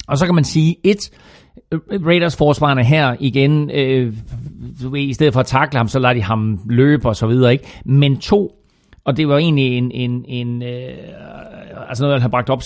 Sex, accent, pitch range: male, native, 125-160 Hz